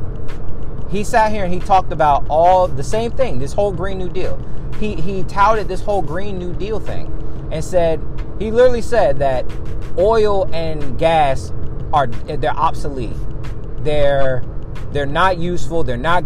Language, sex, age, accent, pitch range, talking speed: English, male, 30-49, American, 125-180 Hz, 160 wpm